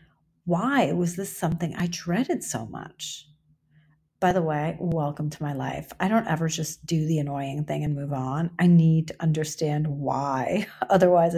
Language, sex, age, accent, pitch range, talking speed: English, female, 40-59, American, 150-175 Hz, 170 wpm